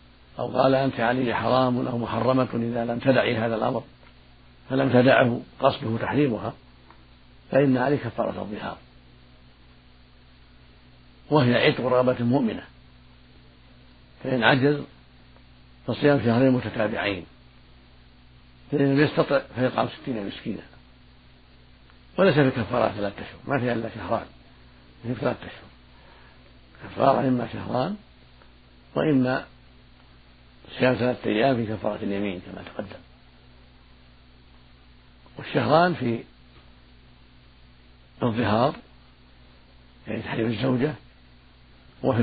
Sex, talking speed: male, 90 wpm